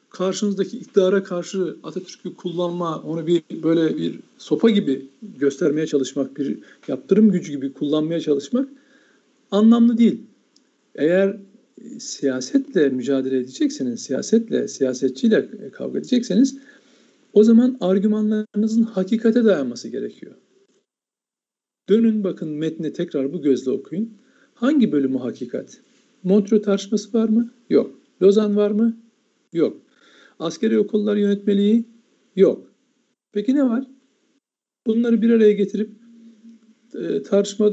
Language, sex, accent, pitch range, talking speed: Turkish, male, native, 180-230 Hz, 105 wpm